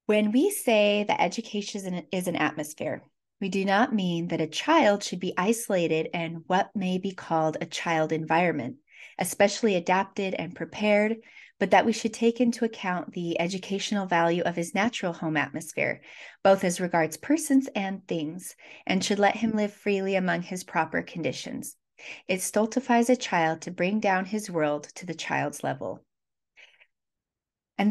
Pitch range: 170-220 Hz